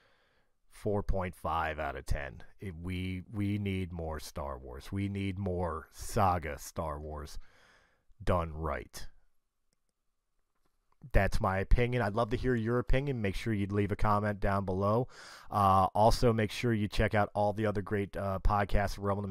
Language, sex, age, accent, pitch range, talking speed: English, male, 30-49, American, 95-115 Hz, 155 wpm